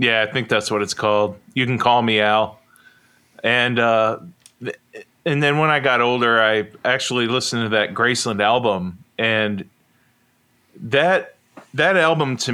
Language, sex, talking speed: English, male, 155 wpm